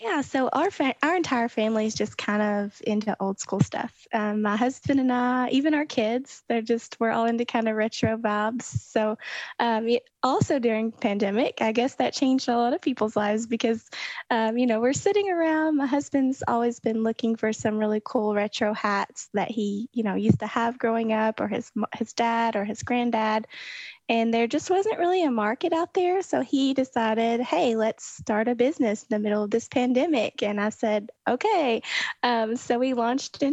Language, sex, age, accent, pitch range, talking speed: English, female, 20-39, American, 220-260 Hz, 200 wpm